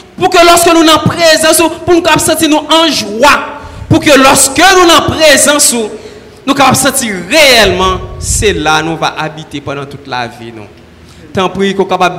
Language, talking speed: French, 170 wpm